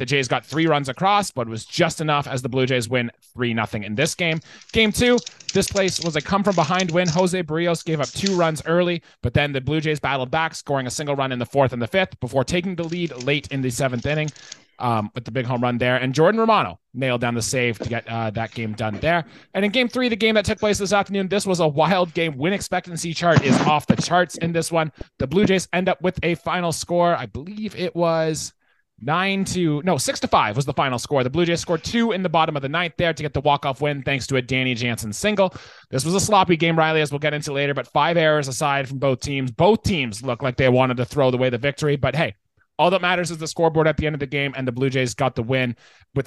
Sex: male